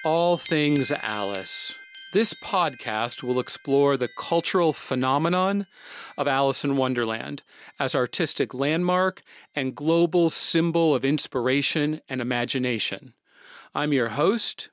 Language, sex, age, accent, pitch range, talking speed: English, male, 40-59, American, 120-160 Hz, 110 wpm